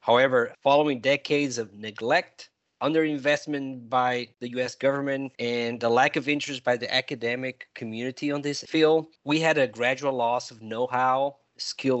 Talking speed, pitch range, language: 150 wpm, 115-140 Hz, English